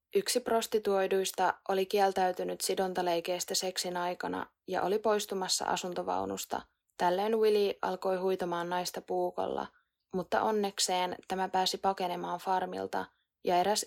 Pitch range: 175-190 Hz